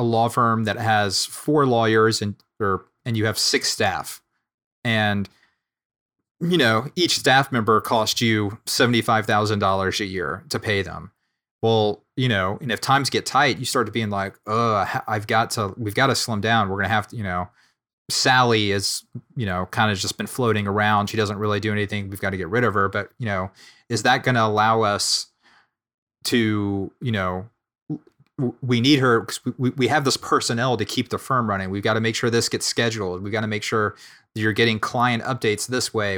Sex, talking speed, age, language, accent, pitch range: male, 205 wpm, 30-49, English, American, 105-125 Hz